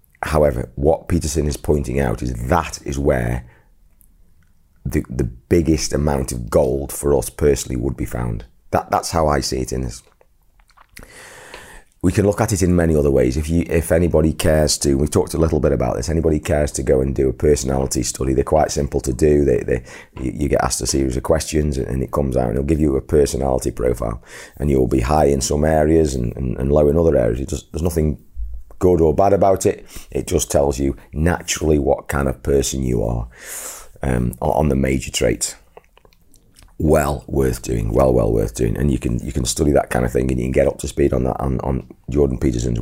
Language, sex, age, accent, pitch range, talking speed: English, male, 30-49, British, 65-80 Hz, 215 wpm